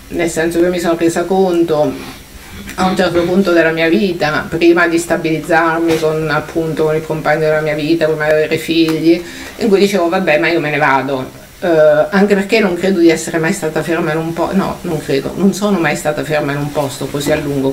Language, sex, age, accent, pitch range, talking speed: Italian, female, 50-69, native, 155-180 Hz, 220 wpm